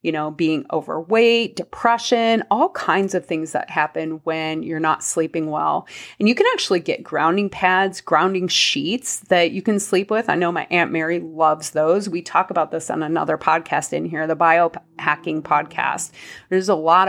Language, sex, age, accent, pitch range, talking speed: English, female, 30-49, American, 155-195 Hz, 185 wpm